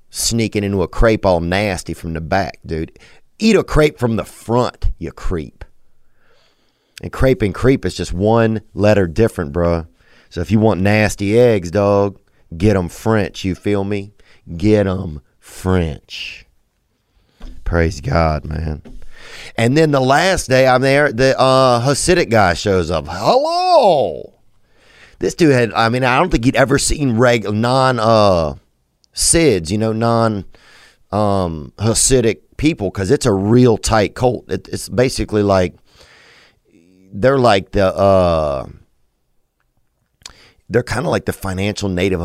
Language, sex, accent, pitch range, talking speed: English, male, American, 90-120 Hz, 145 wpm